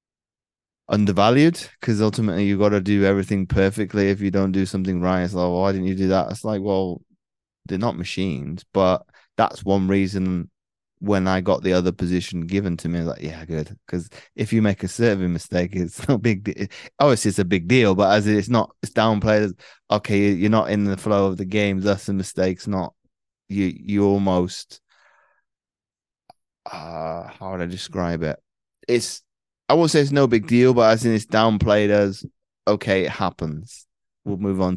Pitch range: 90-105 Hz